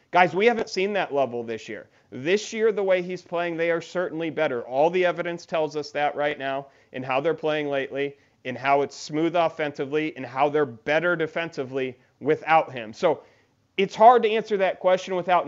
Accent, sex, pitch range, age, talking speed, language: American, male, 130-165 Hz, 40-59, 200 wpm, English